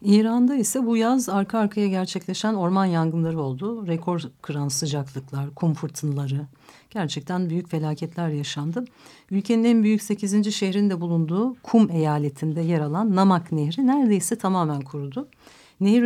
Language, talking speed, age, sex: Turkish, 130 wpm, 60-79, female